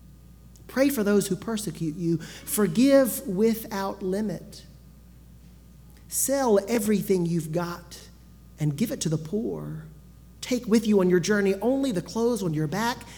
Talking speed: 140 wpm